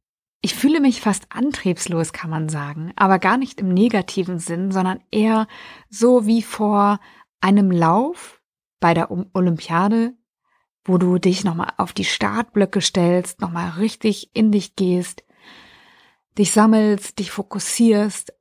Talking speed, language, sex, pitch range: 135 wpm, German, female, 180-220 Hz